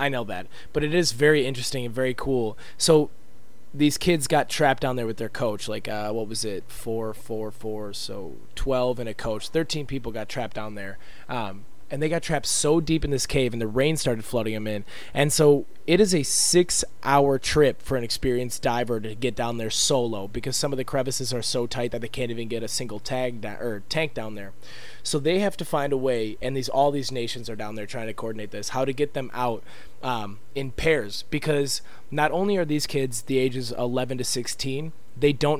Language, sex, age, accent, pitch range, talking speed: English, male, 20-39, American, 115-145 Hz, 230 wpm